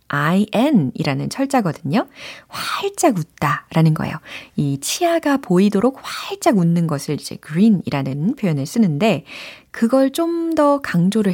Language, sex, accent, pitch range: Korean, female, native, 160-260 Hz